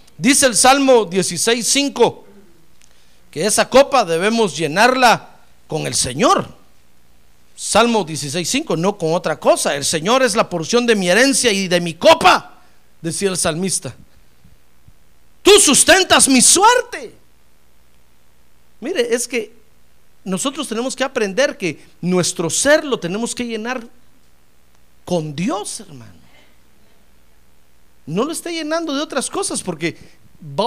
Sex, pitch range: male, 150-245 Hz